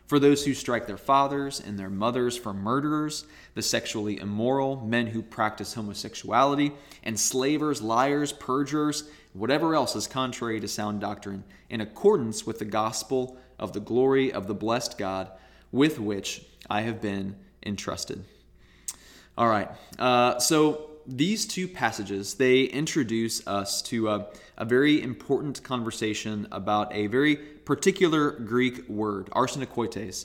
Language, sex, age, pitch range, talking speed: English, male, 20-39, 105-140 Hz, 135 wpm